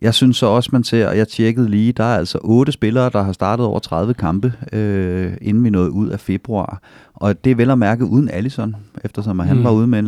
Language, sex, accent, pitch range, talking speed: Danish, male, native, 95-120 Hz, 250 wpm